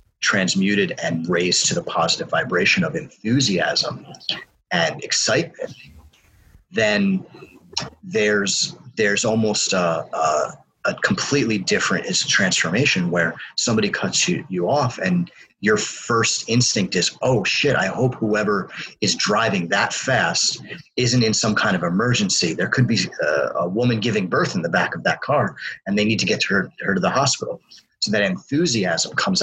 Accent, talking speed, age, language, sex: American, 155 wpm, 30-49, English, male